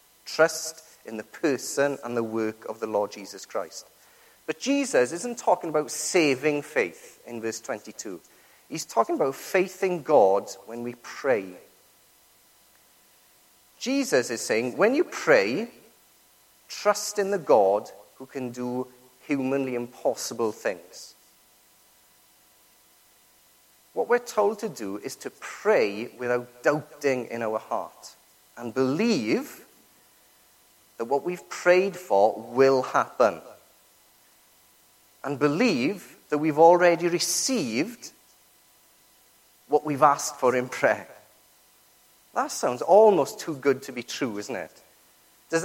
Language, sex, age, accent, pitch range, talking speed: English, male, 40-59, British, 130-200 Hz, 120 wpm